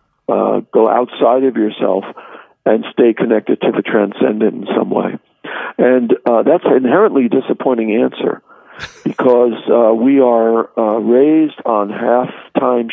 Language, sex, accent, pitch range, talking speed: English, male, American, 115-130 Hz, 135 wpm